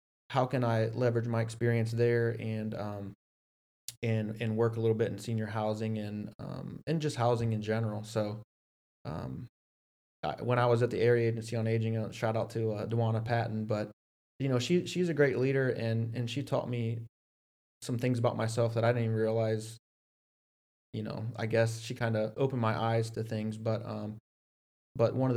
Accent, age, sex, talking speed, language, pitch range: American, 20-39, male, 190 wpm, English, 110-120 Hz